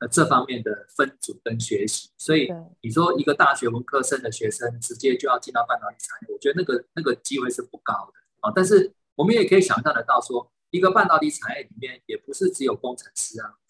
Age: 20-39